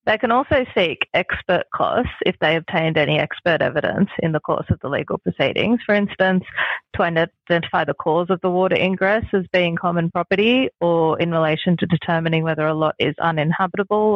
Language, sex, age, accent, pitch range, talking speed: English, female, 30-49, Australian, 155-190 Hz, 180 wpm